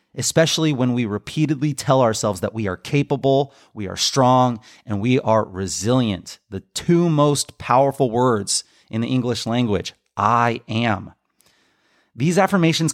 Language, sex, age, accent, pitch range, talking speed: English, male, 30-49, American, 115-150 Hz, 140 wpm